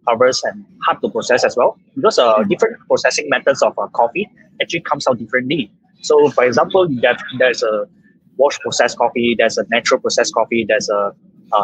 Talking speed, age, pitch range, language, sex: 200 wpm, 20-39, 125-205 Hz, English, male